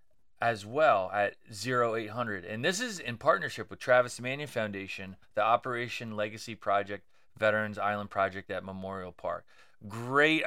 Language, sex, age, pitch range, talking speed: English, male, 30-49, 110-135 Hz, 140 wpm